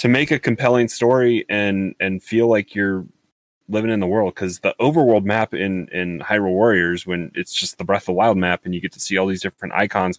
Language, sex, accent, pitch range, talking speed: English, male, American, 90-105 Hz, 235 wpm